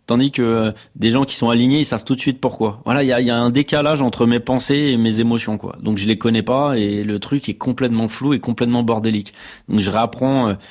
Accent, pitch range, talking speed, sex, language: French, 105-130 Hz, 250 wpm, male, French